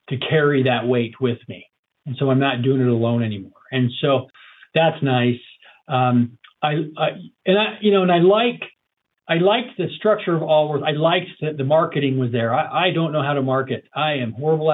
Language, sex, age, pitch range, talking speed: English, male, 40-59, 125-160 Hz, 210 wpm